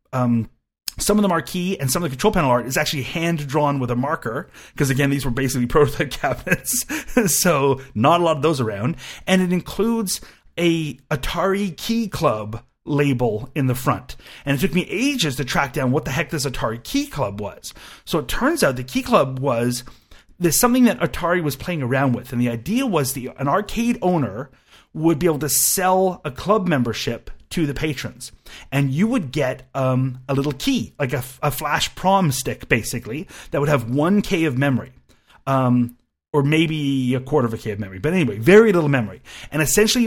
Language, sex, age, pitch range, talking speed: English, male, 30-49, 130-175 Hz, 200 wpm